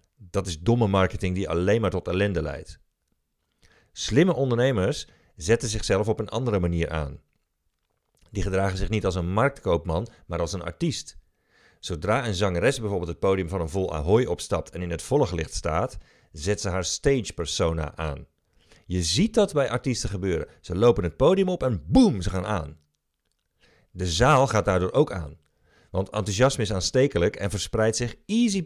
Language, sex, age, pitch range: Dutch, male, 40-59, 85-130 Hz